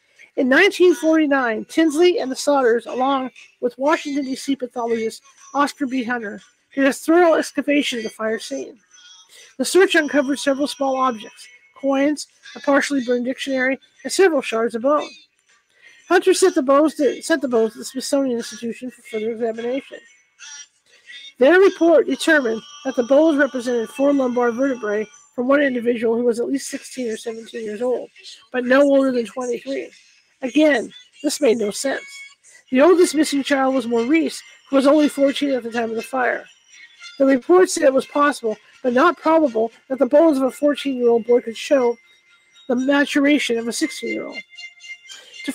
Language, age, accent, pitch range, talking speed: English, 40-59, American, 245-305 Hz, 160 wpm